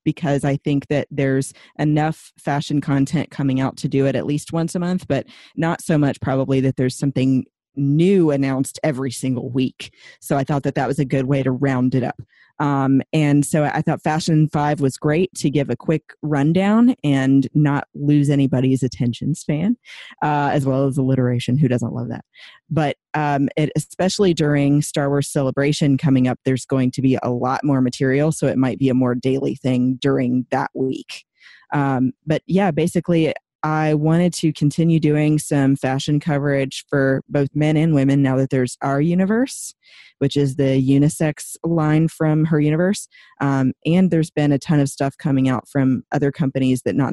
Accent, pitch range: American, 130-150 Hz